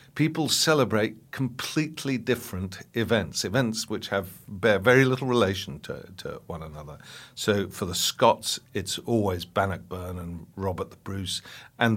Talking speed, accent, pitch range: 135 wpm, British, 90-115 Hz